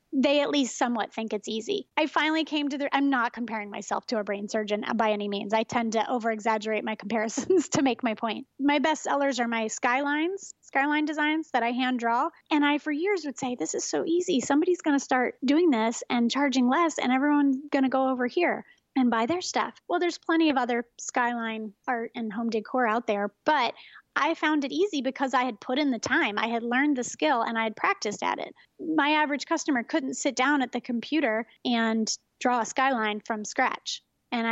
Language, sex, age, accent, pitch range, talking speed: English, female, 30-49, American, 225-290 Hz, 220 wpm